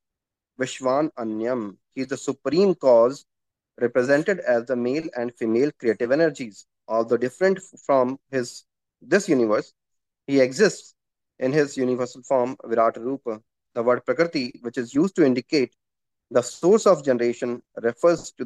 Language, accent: English, Indian